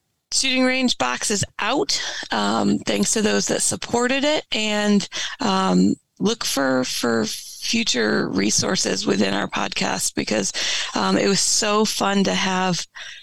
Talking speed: 135 wpm